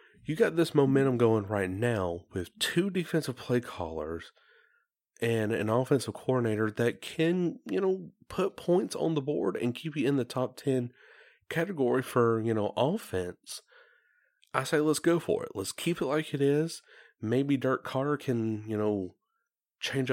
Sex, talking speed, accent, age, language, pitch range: male, 165 wpm, American, 30-49, English, 105-155 Hz